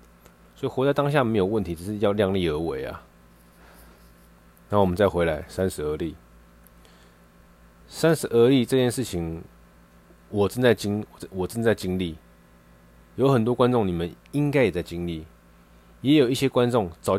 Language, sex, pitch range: Chinese, male, 85-110 Hz